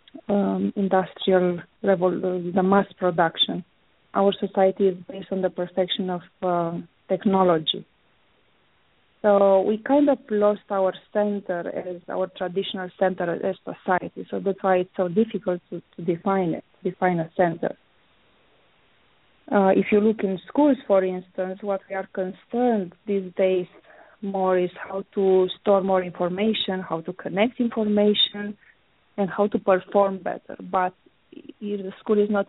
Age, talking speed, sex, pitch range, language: 20-39, 140 wpm, female, 185-210 Hz, English